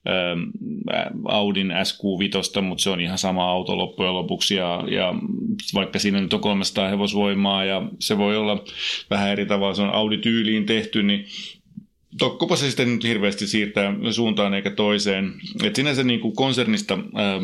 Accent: native